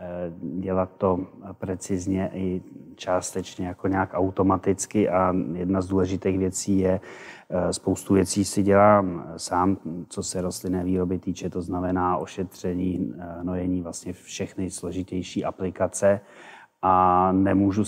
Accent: native